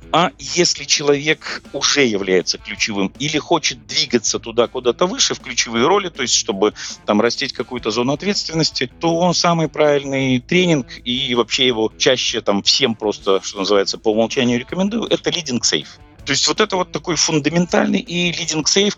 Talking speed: 160 wpm